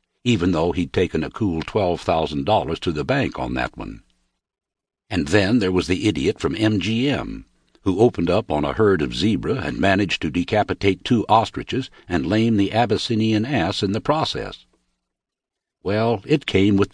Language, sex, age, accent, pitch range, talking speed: English, male, 60-79, American, 85-115 Hz, 165 wpm